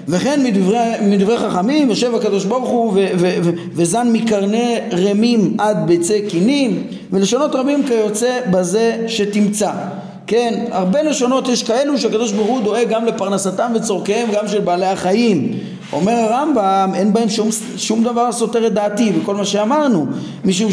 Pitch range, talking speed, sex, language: 200-245 Hz, 150 wpm, male, Hebrew